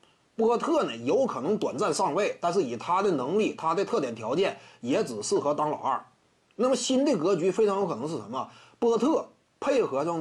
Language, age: Chinese, 30-49